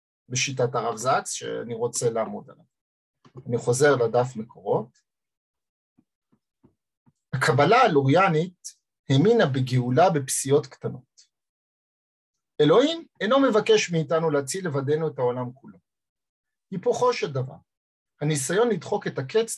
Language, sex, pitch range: Hebrew, male, 130-185 Hz